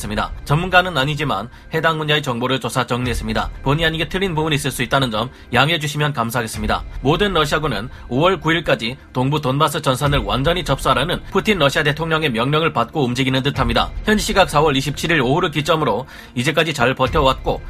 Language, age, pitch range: Korean, 30-49, 130-165 Hz